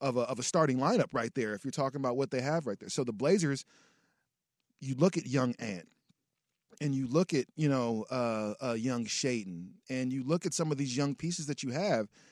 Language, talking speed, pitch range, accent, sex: English, 230 wpm, 125-155 Hz, American, male